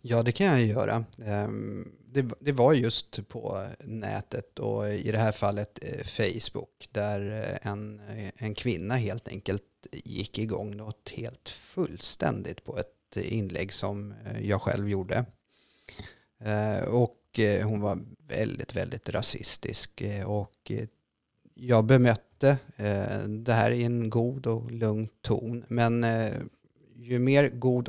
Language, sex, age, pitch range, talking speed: Swedish, male, 30-49, 105-120 Hz, 115 wpm